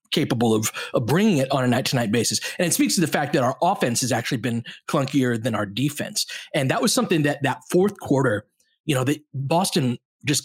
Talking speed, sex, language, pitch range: 230 wpm, male, English, 130-165 Hz